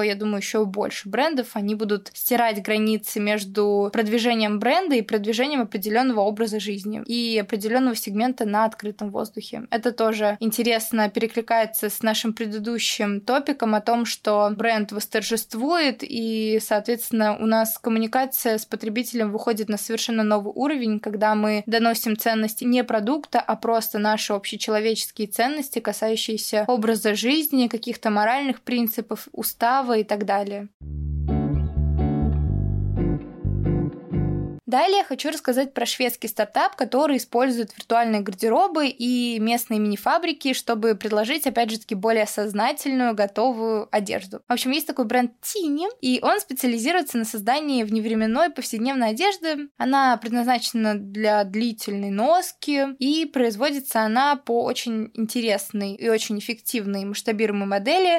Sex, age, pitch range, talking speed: female, 20-39, 215-250 Hz, 125 wpm